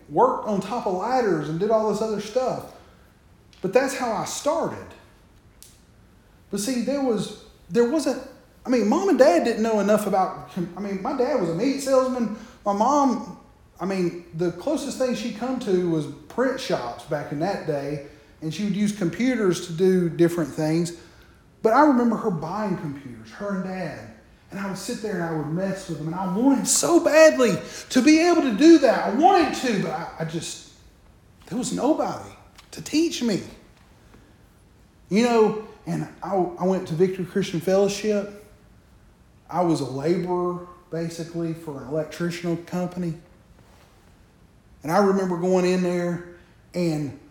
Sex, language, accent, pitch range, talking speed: male, English, American, 170-235 Hz, 170 wpm